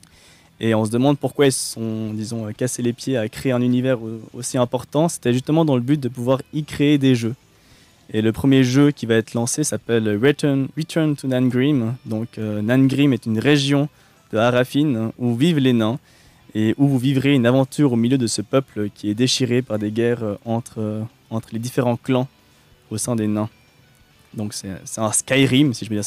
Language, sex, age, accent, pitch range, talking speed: French, male, 20-39, French, 110-135 Hz, 205 wpm